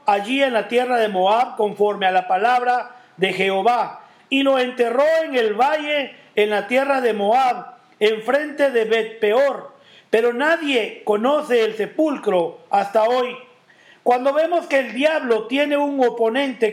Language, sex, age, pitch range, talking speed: English, male, 40-59, 225-280 Hz, 150 wpm